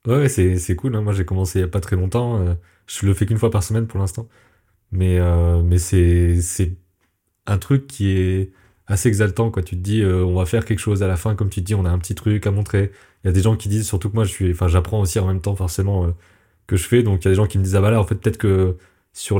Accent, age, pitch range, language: French, 30-49, 90-105 Hz, French